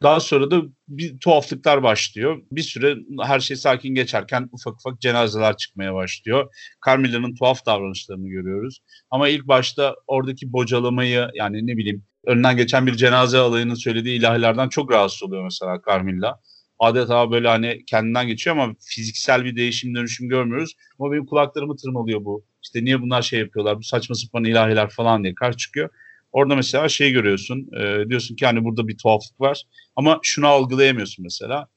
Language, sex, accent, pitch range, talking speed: Turkish, male, native, 115-135 Hz, 160 wpm